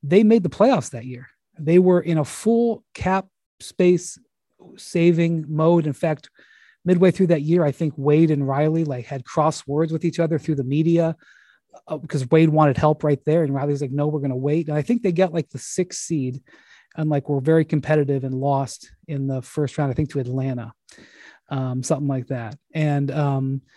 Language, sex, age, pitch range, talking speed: English, male, 30-49, 135-160 Hz, 200 wpm